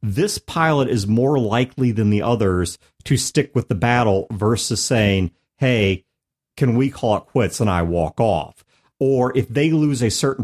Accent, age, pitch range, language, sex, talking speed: American, 40-59, 95-130 Hz, English, male, 180 wpm